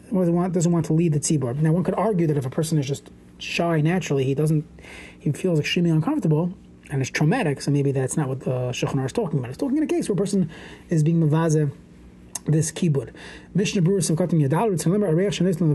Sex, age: male, 30-49